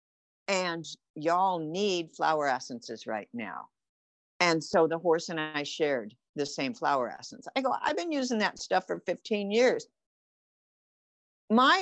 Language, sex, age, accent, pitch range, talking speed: English, female, 50-69, American, 175-240 Hz, 145 wpm